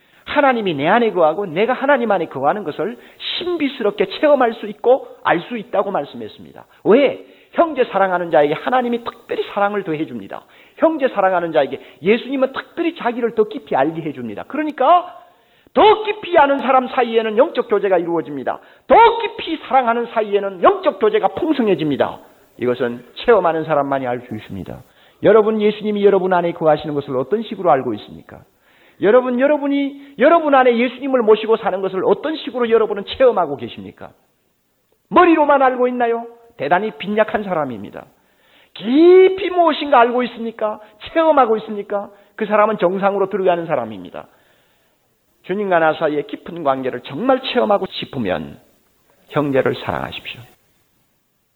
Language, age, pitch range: Korean, 40-59, 180-270 Hz